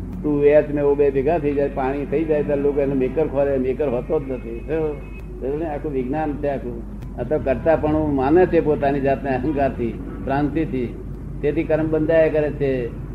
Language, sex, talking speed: Gujarati, male, 105 wpm